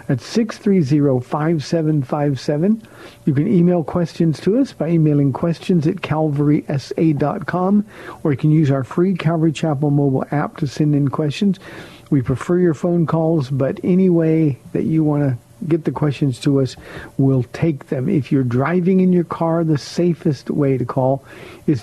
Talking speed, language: 180 wpm, English